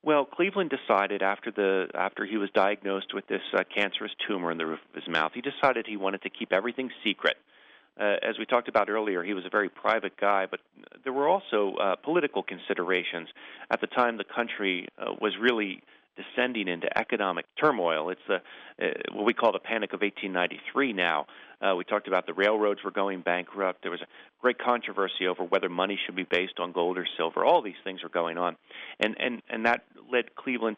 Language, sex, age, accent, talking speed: English, male, 40-59, American, 205 wpm